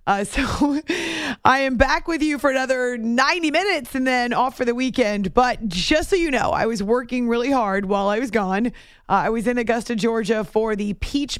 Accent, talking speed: American, 210 wpm